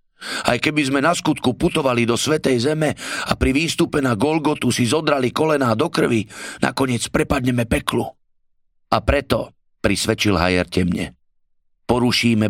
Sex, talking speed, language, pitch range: male, 135 wpm, Slovak, 95-125 Hz